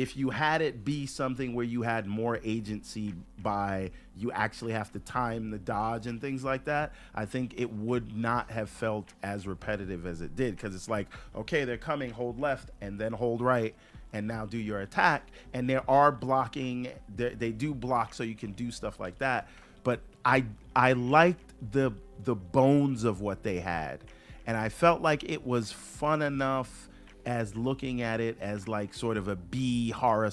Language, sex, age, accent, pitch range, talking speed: English, male, 40-59, American, 105-130 Hz, 190 wpm